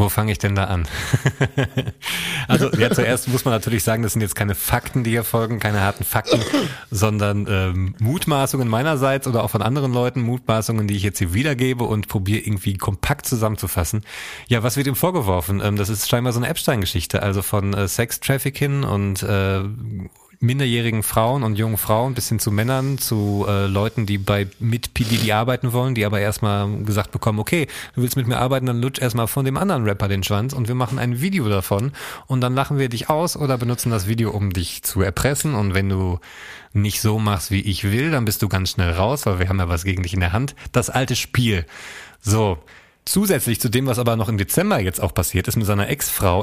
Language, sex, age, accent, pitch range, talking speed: German, male, 30-49, German, 100-130 Hz, 215 wpm